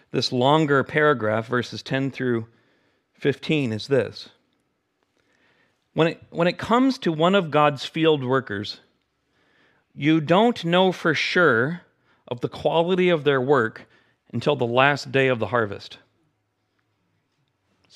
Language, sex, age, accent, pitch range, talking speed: English, male, 40-59, American, 135-185 Hz, 125 wpm